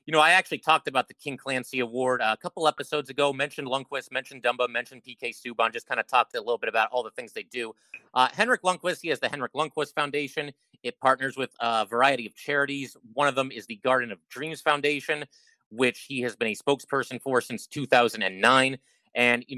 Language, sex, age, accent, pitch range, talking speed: English, male, 30-49, American, 125-155 Hz, 215 wpm